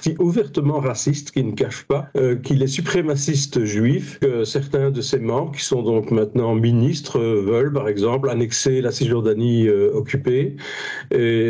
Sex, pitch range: male, 125-145 Hz